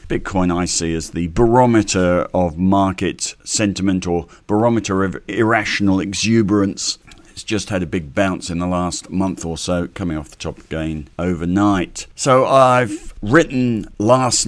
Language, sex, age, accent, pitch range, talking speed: English, male, 50-69, British, 85-105 Hz, 150 wpm